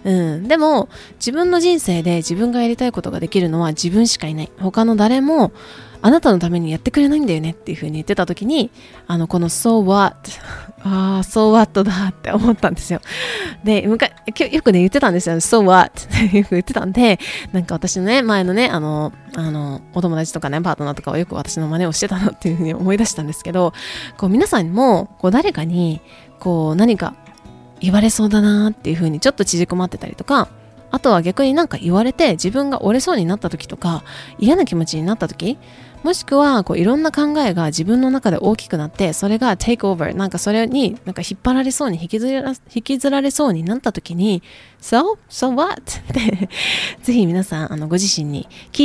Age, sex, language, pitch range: 20-39, female, Japanese, 170-235 Hz